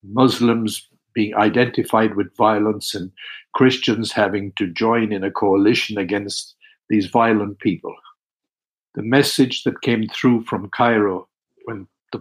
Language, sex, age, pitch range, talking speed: English, male, 60-79, 110-135 Hz, 130 wpm